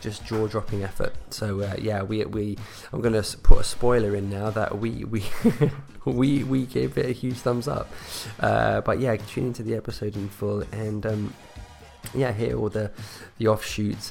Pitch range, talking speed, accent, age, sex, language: 100-110 Hz, 185 wpm, British, 20-39, male, English